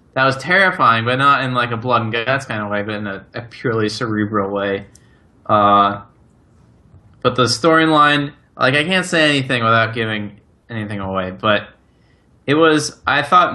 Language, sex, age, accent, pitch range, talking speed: English, male, 20-39, American, 105-140 Hz, 175 wpm